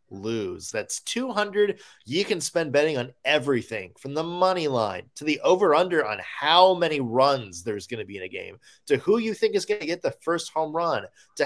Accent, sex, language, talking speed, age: American, male, English, 215 wpm, 20-39